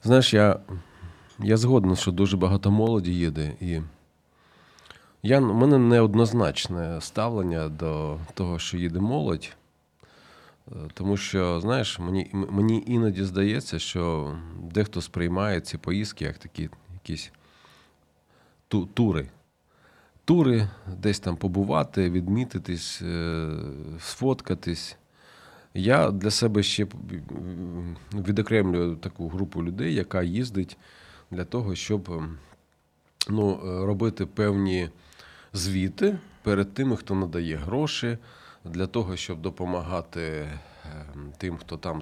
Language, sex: Ukrainian, male